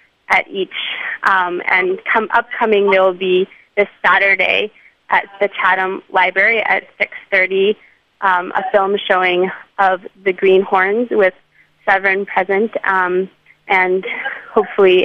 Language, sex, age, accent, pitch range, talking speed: English, female, 20-39, American, 185-200 Hz, 120 wpm